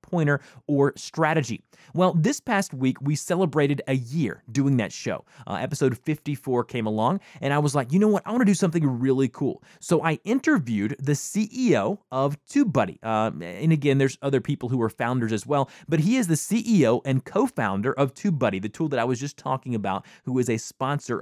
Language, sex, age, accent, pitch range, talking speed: English, male, 20-39, American, 130-170 Hz, 205 wpm